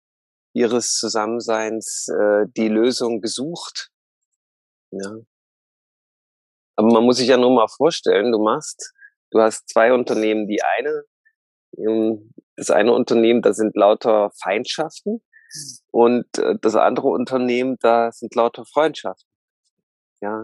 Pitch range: 110-130 Hz